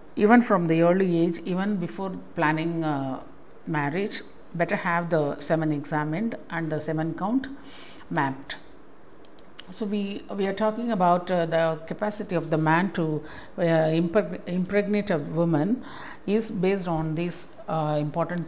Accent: native